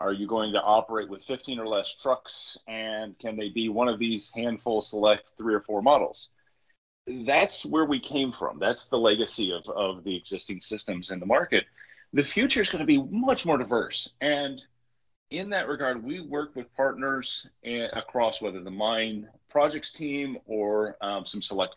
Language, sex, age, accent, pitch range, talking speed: English, male, 30-49, American, 110-140 Hz, 180 wpm